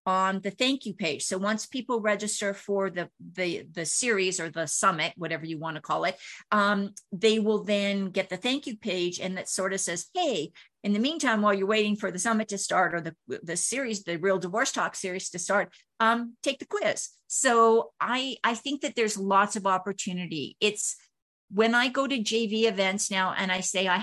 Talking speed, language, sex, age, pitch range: 210 wpm, English, female, 50-69, 185-230 Hz